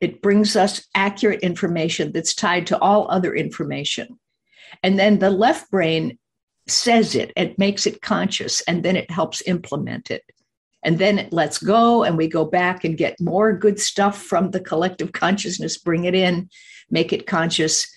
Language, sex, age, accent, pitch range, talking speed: English, female, 50-69, American, 170-215 Hz, 175 wpm